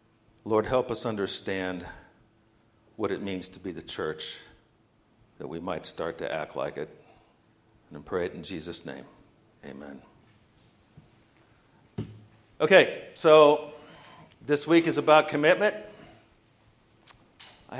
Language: English